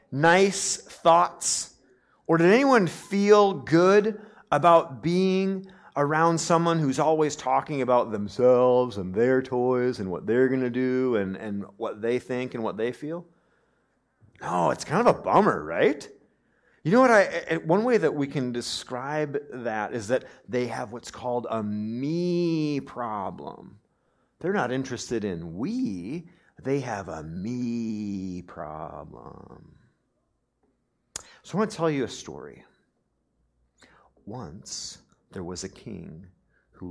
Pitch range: 100-170 Hz